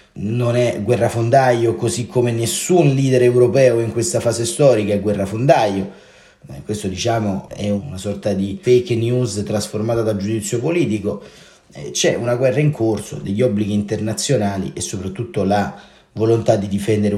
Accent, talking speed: native, 145 wpm